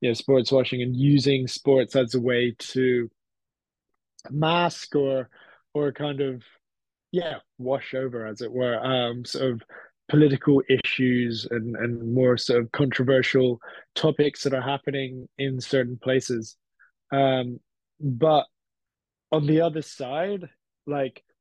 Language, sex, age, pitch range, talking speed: English, male, 20-39, 120-140 Hz, 125 wpm